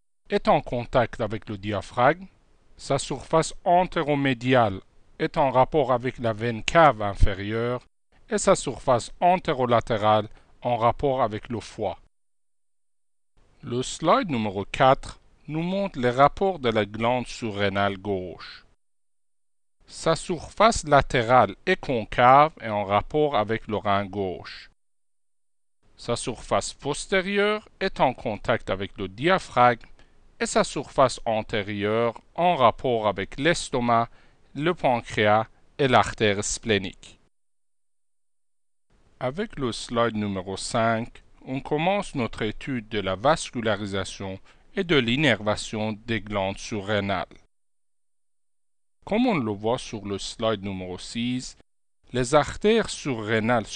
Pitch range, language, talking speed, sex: 105-140 Hz, French, 115 wpm, male